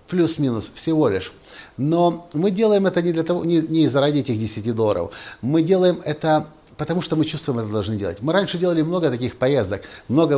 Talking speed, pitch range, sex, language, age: 200 wpm, 125-165 Hz, male, Russian, 50-69